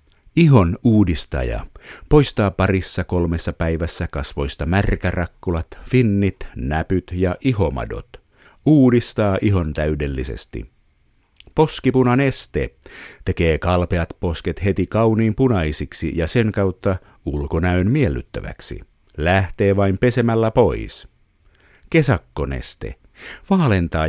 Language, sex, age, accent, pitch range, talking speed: Finnish, male, 50-69, native, 85-120 Hz, 85 wpm